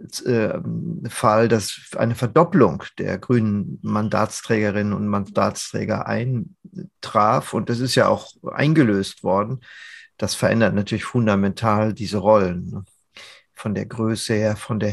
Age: 50-69